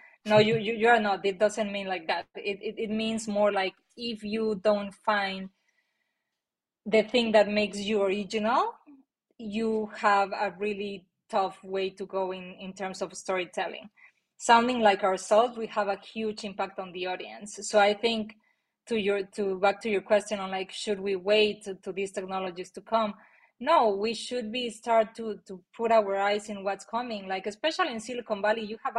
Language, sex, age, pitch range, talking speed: English, female, 20-39, 195-225 Hz, 190 wpm